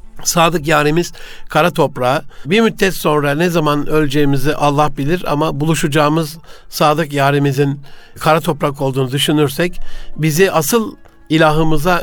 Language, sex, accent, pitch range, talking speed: Turkish, male, native, 145-170 Hz, 115 wpm